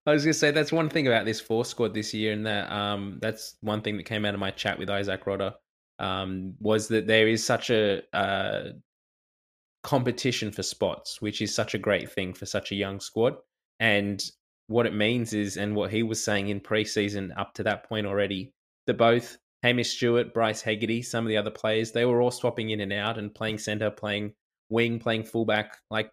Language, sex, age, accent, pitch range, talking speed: English, male, 20-39, Australian, 100-115 Hz, 215 wpm